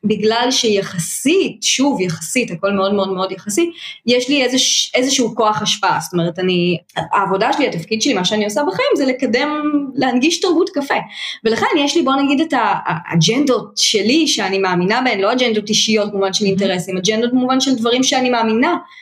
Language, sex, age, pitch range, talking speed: Hebrew, female, 20-39, 190-255 Hz, 170 wpm